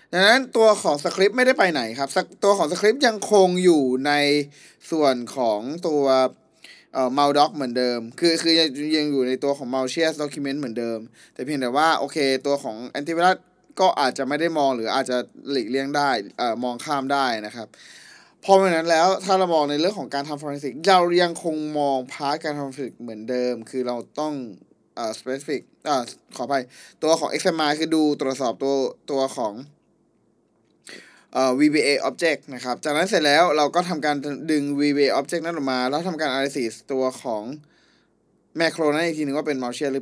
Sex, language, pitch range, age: male, Thai, 130-160 Hz, 20-39